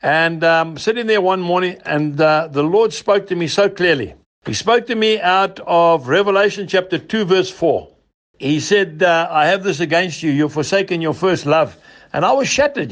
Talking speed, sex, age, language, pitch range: 205 wpm, male, 60-79, English, 150-205 Hz